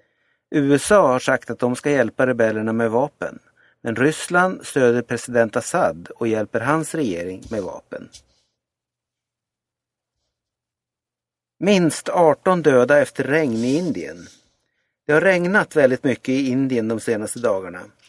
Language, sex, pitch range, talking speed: Swedish, male, 115-150 Hz, 125 wpm